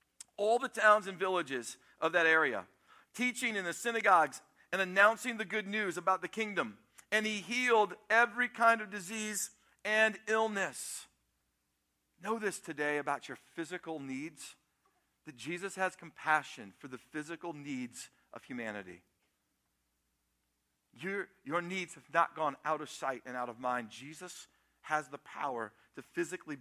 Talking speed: 145 wpm